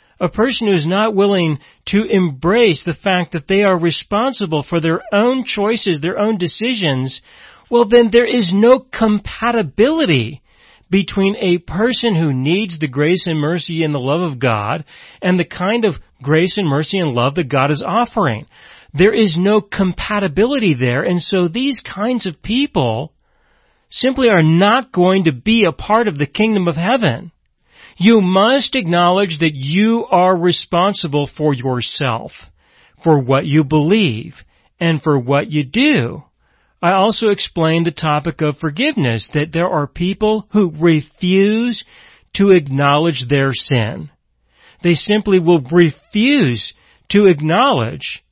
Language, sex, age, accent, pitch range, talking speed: English, male, 40-59, American, 155-210 Hz, 150 wpm